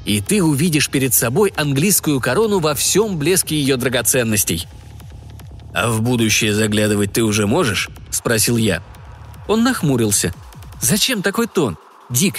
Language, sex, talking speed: Russian, male, 130 wpm